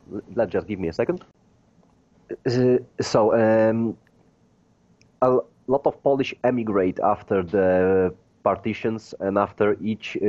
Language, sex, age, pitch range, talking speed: English, male, 30-49, 90-105 Hz, 120 wpm